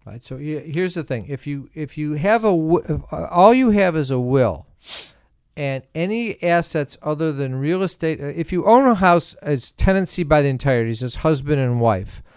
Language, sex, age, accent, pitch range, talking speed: English, male, 50-69, American, 140-175 Hz, 190 wpm